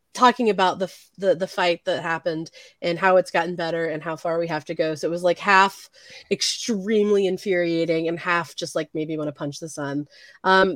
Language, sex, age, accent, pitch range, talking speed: English, female, 20-39, American, 165-205 Hz, 210 wpm